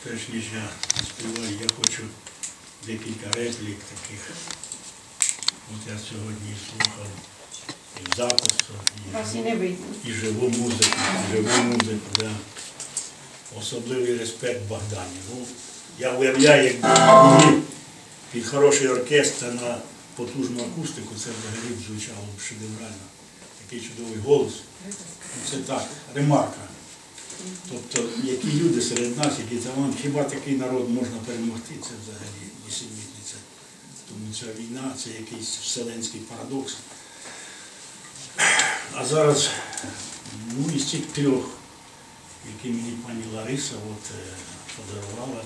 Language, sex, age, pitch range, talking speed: Ukrainian, male, 60-79, 110-130 Hz, 105 wpm